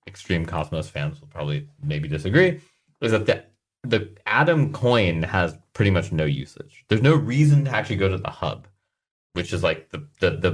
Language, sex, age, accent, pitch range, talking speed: English, male, 30-49, American, 85-135 Hz, 190 wpm